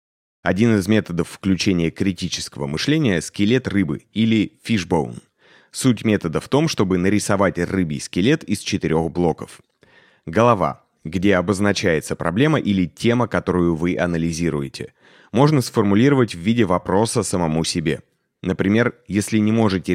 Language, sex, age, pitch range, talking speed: Russian, male, 30-49, 85-115 Hz, 125 wpm